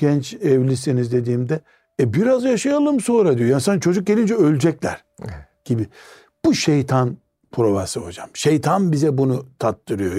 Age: 60-79